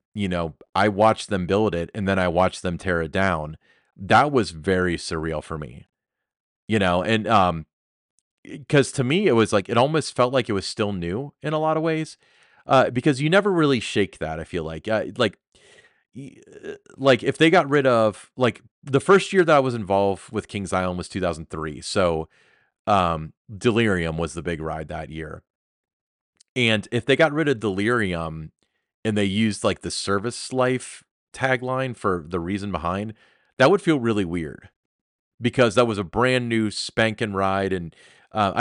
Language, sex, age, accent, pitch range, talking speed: English, male, 30-49, American, 90-125 Hz, 185 wpm